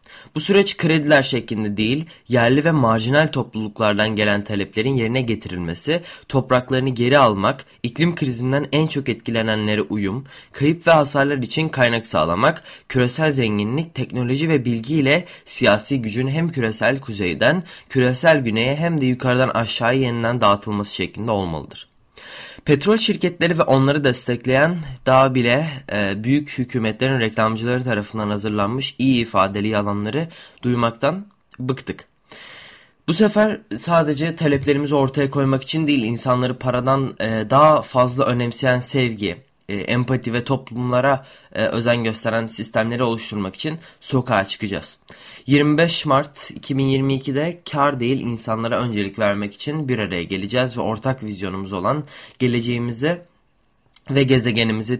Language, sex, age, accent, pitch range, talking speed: Turkish, male, 20-39, native, 110-140 Hz, 120 wpm